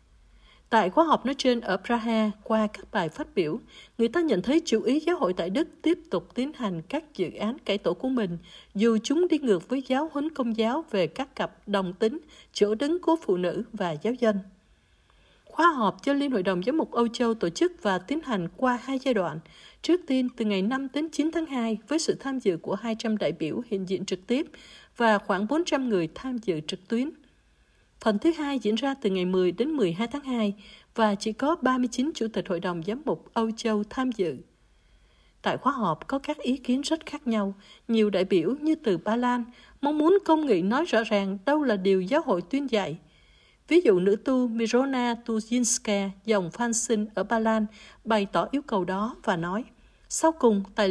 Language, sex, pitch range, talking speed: Vietnamese, female, 200-270 Hz, 215 wpm